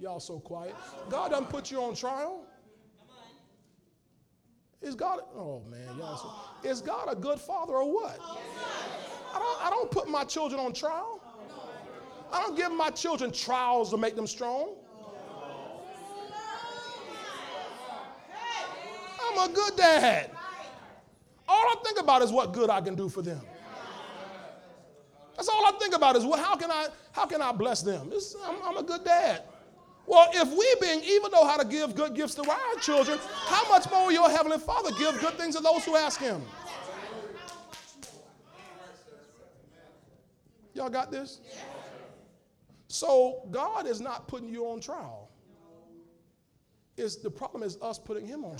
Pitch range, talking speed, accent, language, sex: 235-350 Hz, 150 wpm, American, English, male